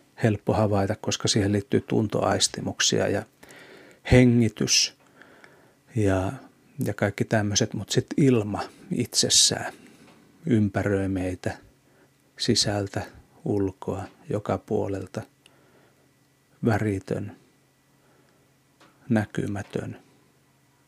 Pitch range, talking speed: 105-130 Hz, 70 wpm